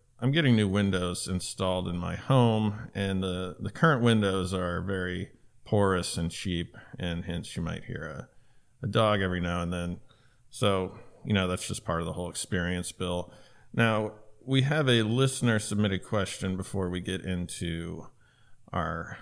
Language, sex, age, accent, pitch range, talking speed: English, male, 40-59, American, 90-115 Hz, 160 wpm